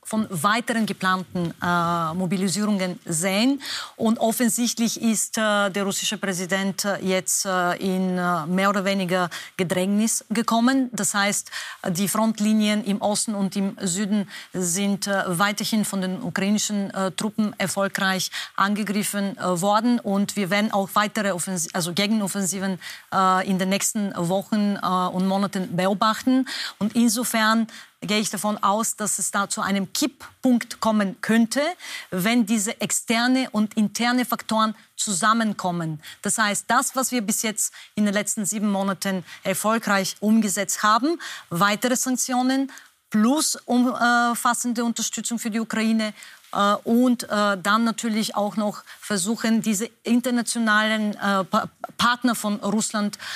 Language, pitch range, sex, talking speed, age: German, 195-225 Hz, female, 130 wpm, 30-49